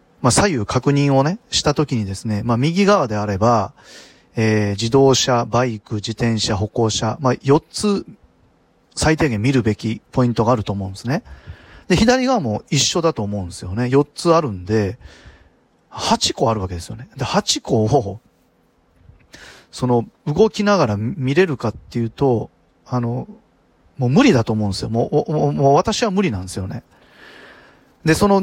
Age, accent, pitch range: 40-59, native, 115-165 Hz